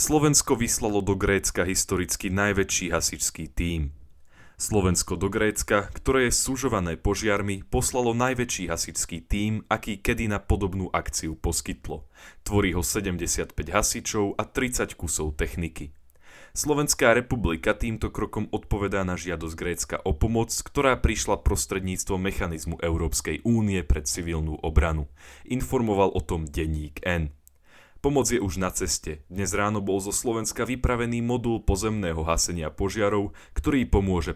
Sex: male